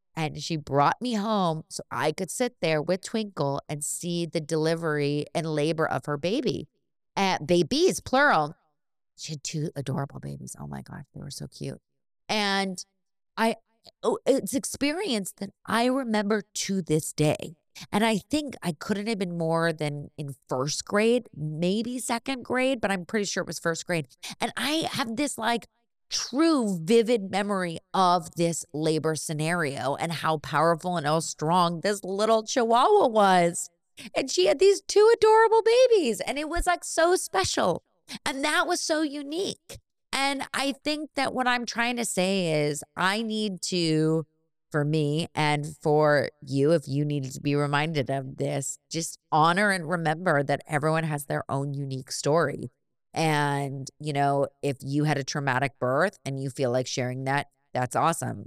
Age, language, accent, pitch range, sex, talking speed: 30-49, English, American, 145-225 Hz, female, 170 wpm